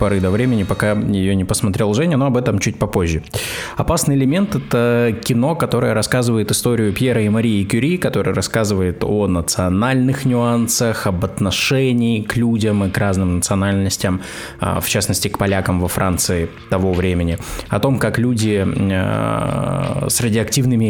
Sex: male